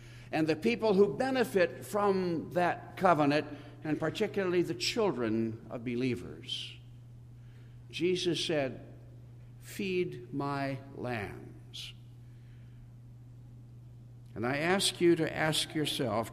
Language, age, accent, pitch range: English, 60-79, American, 120-160 Hz